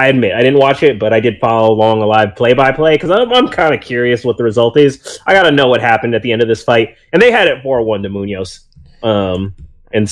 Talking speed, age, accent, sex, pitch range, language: 255 wpm, 30-49, American, male, 115-155 Hz, English